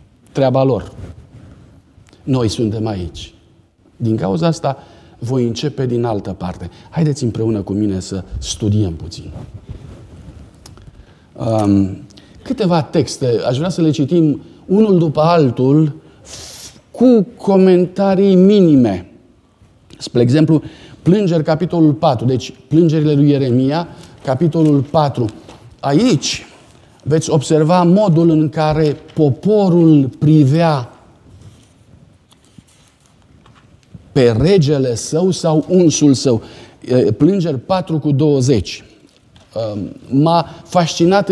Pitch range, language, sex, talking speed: 120-170 Hz, Romanian, male, 95 wpm